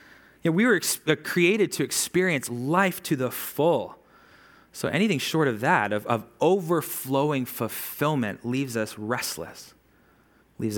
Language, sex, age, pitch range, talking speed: English, male, 20-39, 110-160 Hz, 120 wpm